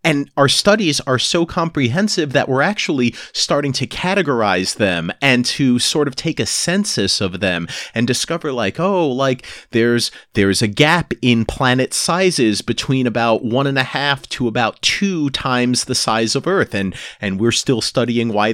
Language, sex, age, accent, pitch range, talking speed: English, male, 30-49, American, 120-165 Hz, 175 wpm